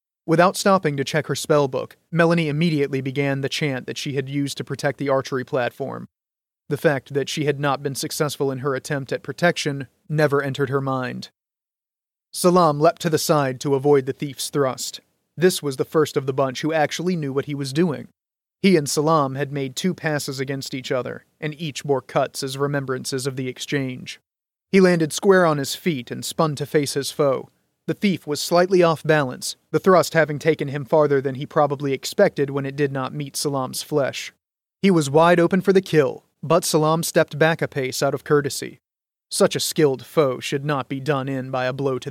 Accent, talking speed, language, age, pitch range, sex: American, 205 wpm, English, 30-49, 140-160 Hz, male